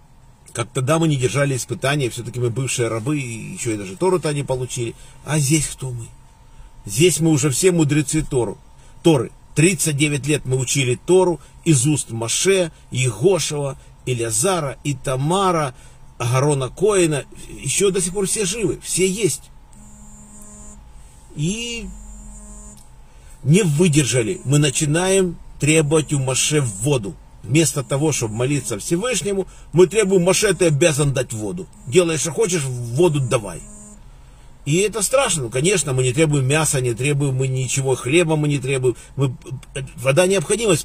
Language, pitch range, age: Russian, 125-170 Hz, 50-69